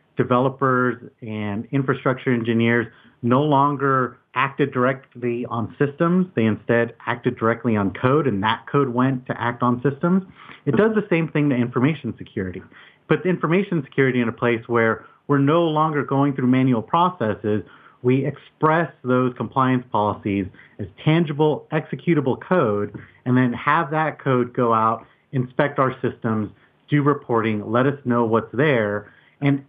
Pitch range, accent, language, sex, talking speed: 115-145 Hz, American, English, male, 150 wpm